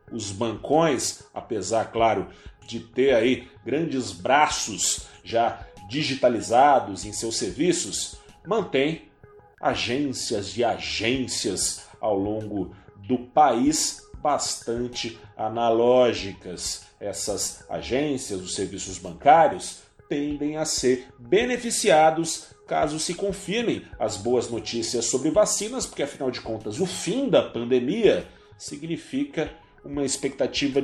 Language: Portuguese